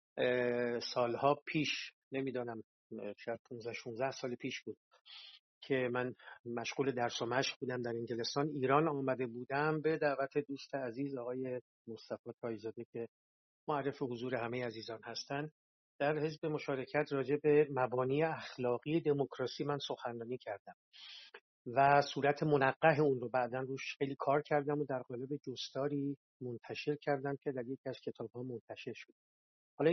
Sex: male